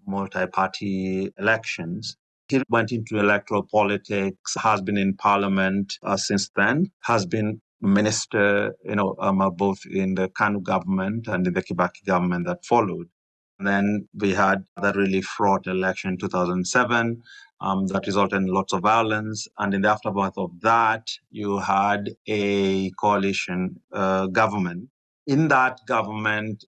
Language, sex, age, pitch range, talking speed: English, male, 30-49, 95-110 Hz, 140 wpm